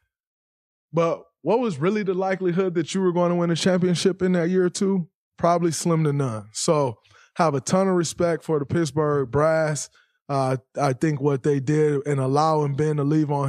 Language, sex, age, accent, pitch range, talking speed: English, male, 20-39, American, 135-170 Hz, 200 wpm